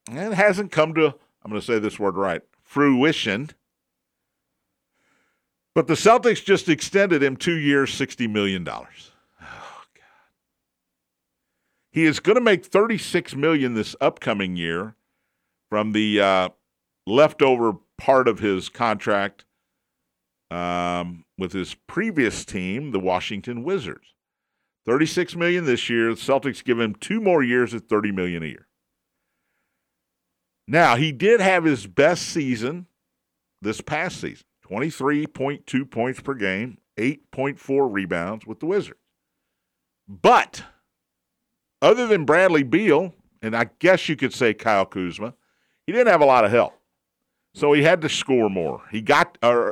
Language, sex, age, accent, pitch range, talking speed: English, male, 50-69, American, 105-165 Hz, 140 wpm